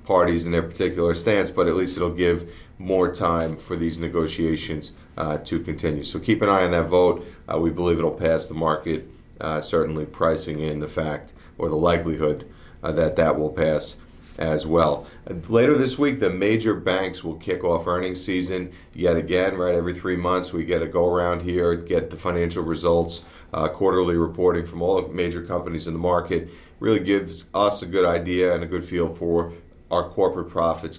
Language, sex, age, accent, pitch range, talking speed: English, male, 40-59, American, 80-95 Hz, 195 wpm